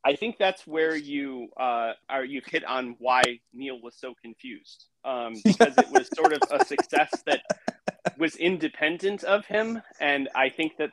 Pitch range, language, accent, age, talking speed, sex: 120-160 Hz, English, American, 30-49, 175 wpm, male